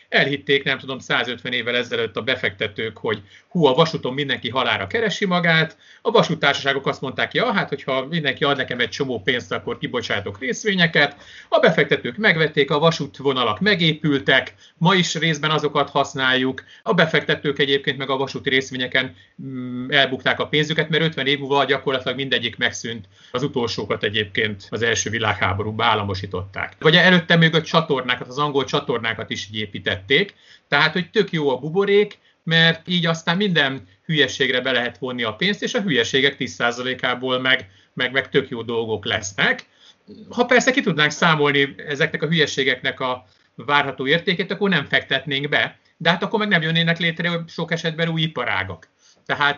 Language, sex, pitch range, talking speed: Hungarian, male, 125-165 Hz, 155 wpm